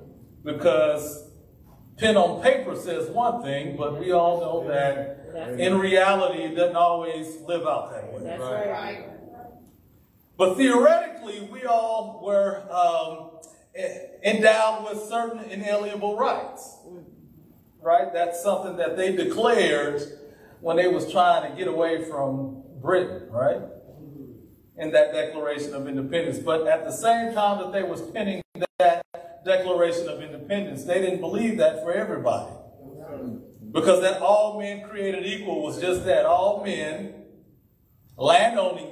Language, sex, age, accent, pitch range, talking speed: English, male, 40-59, American, 150-205 Hz, 130 wpm